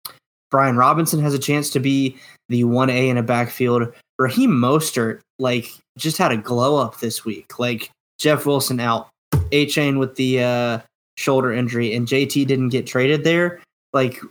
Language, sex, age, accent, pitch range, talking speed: English, male, 10-29, American, 120-140 Hz, 165 wpm